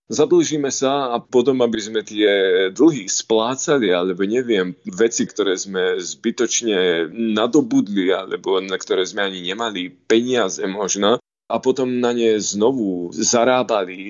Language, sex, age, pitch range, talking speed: Slovak, male, 30-49, 95-135 Hz, 130 wpm